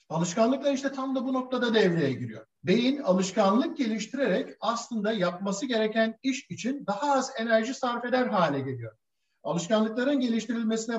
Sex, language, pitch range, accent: male, Turkish, 170-230 Hz, native